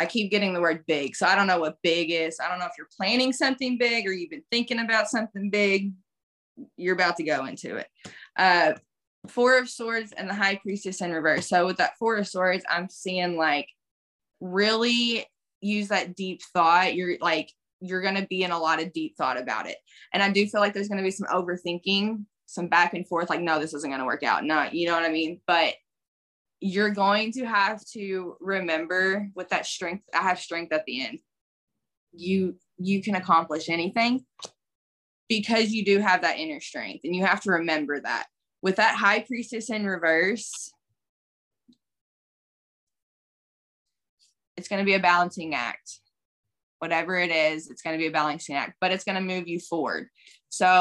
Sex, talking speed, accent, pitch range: female, 195 wpm, American, 170-205 Hz